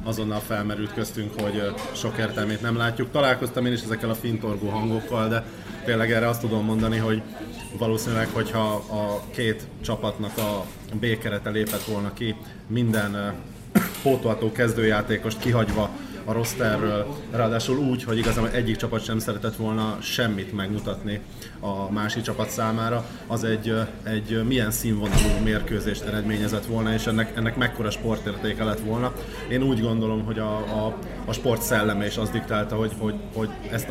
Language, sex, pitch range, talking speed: Hungarian, male, 105-115 Hz, 150 wpm